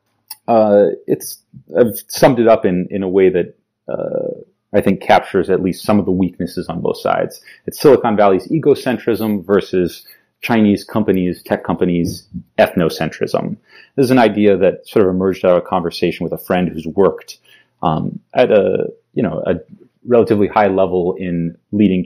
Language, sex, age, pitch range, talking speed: English, male, 30-49, 90-115 Hz, 170 wpm